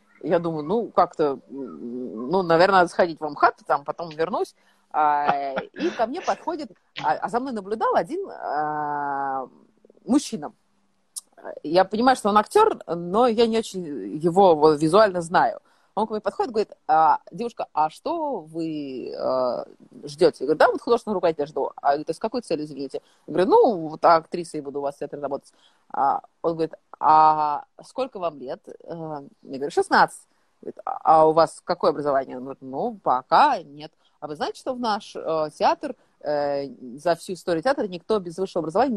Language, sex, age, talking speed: Russian, female, 30-49, 165 wpm